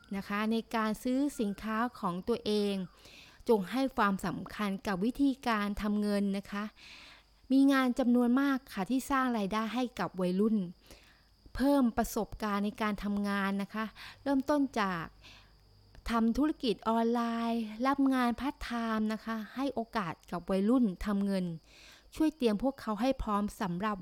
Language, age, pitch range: Thai, 20-39, 195-240 Hz